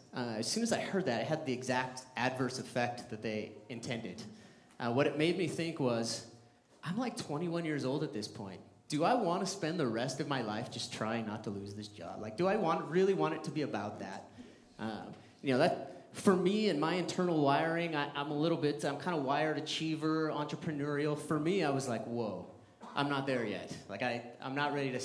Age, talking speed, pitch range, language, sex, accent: 30-49, 230 wpm, 120-165 Hz, English, male, American